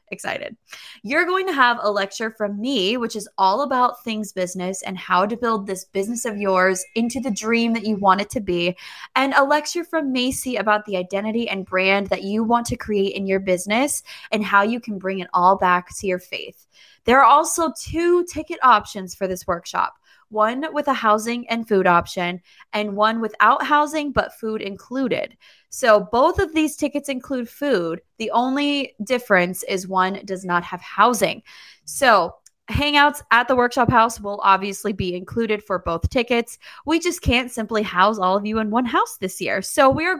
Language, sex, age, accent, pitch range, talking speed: English, female, 20-39, American, 190-260 Hz, 190 wpm